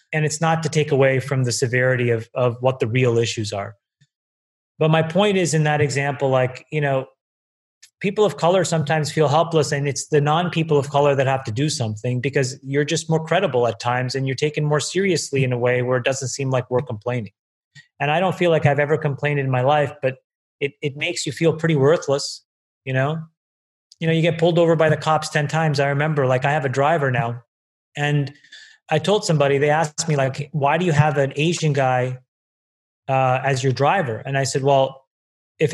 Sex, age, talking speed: male, 30-49, 215 wpm